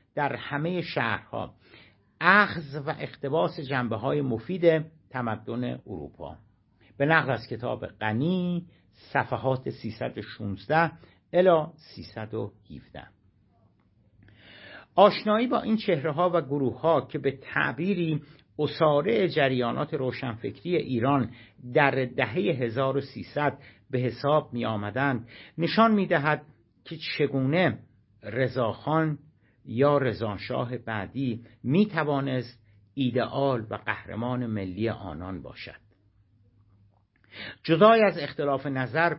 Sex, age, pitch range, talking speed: male, 50-69, 110-150 Hz, 90 wpm